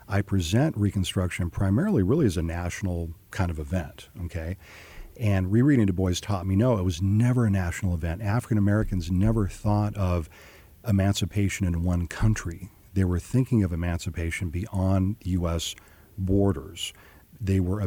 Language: English